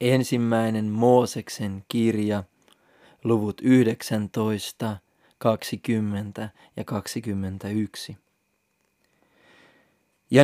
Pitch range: 110-140 Hz